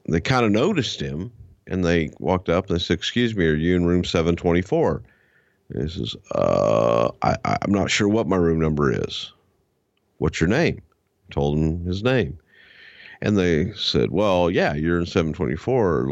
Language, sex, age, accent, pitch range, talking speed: English, male, 50-69, American, 80-105 Hz, 170 wpm